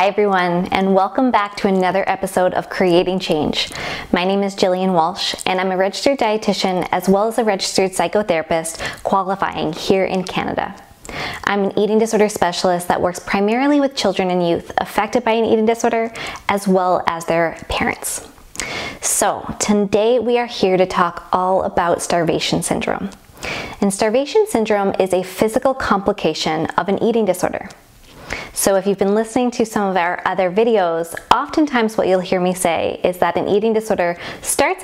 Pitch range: 185-225 Hz